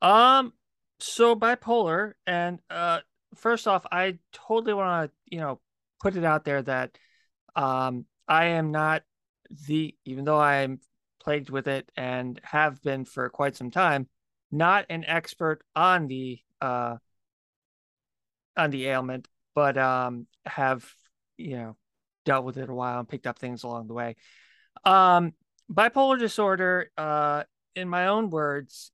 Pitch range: 130-175 Hz